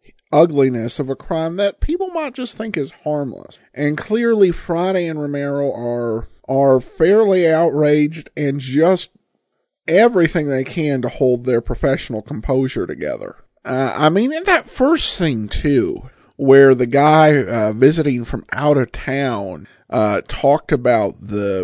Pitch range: 120-175 Hz